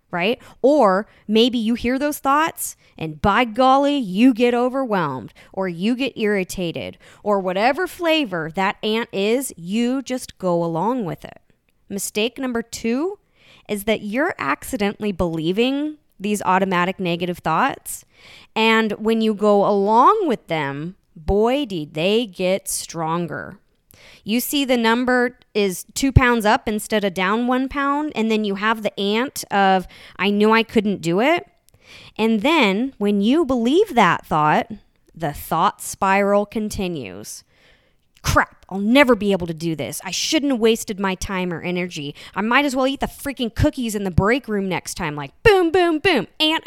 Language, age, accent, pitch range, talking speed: English, 20-39, American, 195-260 Hz, 160 wpm